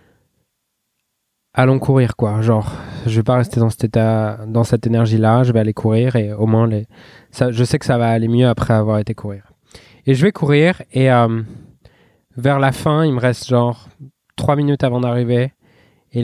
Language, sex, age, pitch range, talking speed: French, male, 20-39, 115-130 Hz, 195 wpm